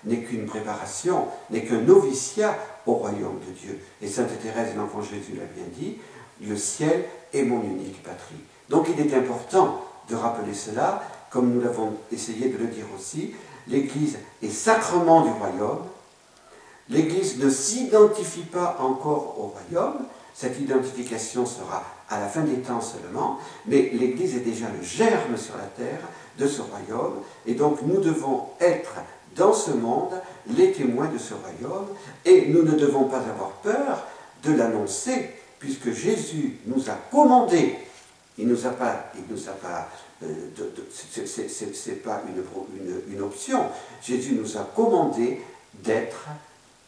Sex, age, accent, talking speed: male, 50-69, French, 155 wpm